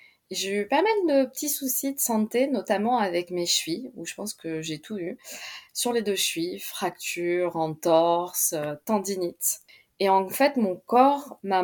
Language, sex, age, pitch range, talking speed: French, female, 20-39, 180-225 Hz, 170 wpm